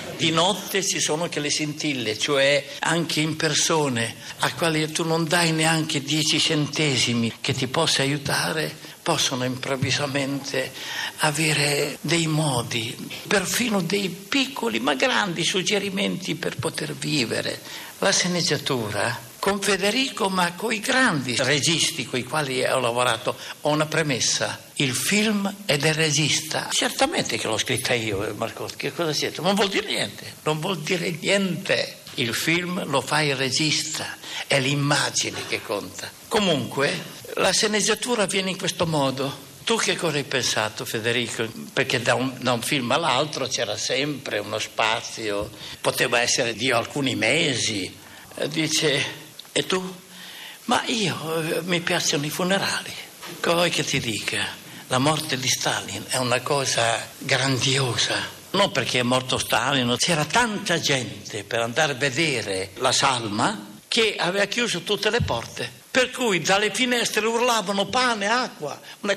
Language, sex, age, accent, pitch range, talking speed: Italian, male, 60-79, native, 135-185 Hz, 140 wpm